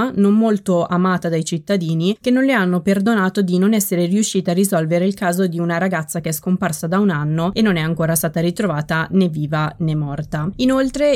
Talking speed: 205 wpm